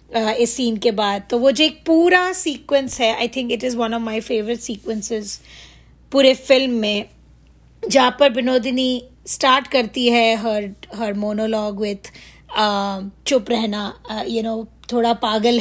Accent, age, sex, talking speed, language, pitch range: native, 20-39, female, 170 wpm, Hindi, 220-255 Hz